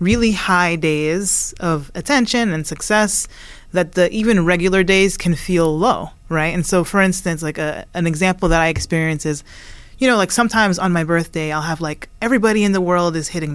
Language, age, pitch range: English, 30-49, 160-185 Hz